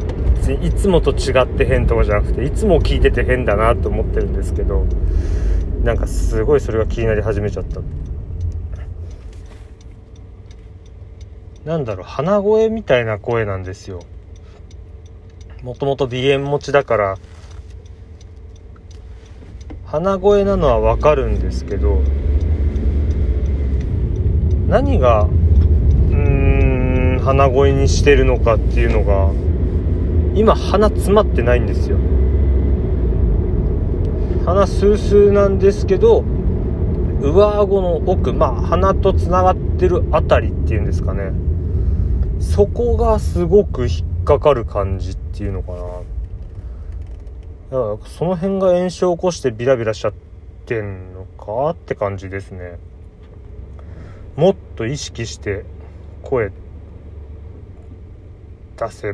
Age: 40-59